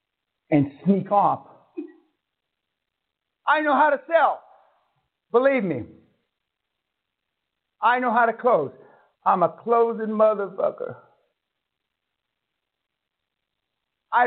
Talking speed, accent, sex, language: 85 wpm, American, male, English